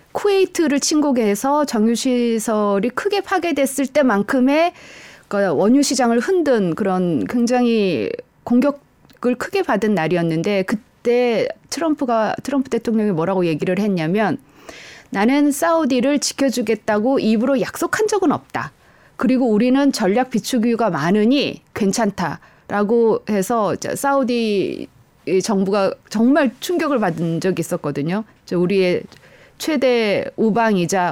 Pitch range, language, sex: 195-260 Hz, Korean, female